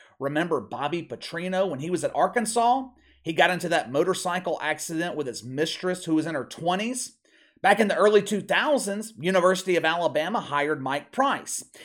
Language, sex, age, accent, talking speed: English, male, 40-59, American, 165 wpm